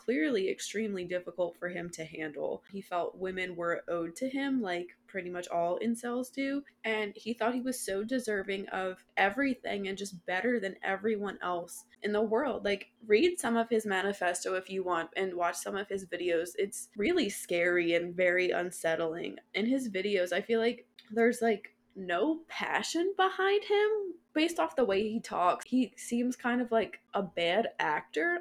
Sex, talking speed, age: female, 180 wpm, 20-39